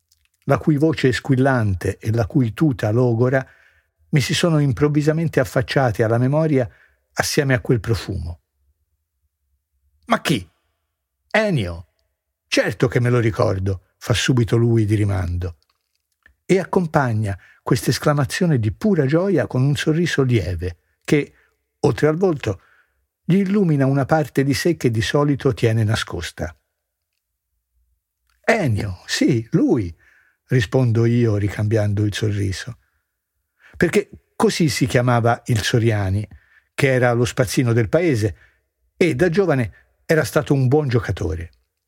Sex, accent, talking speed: male, native, 125 wpm